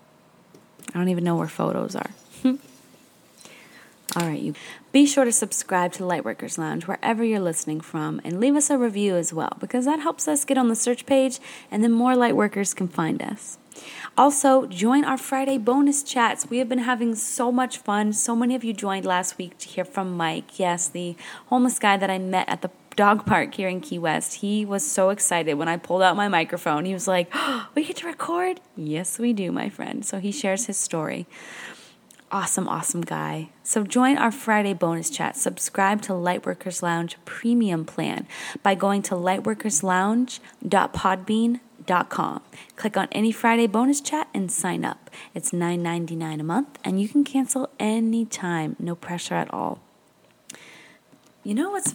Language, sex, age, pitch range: English, female, 20-39, 180-255 Hz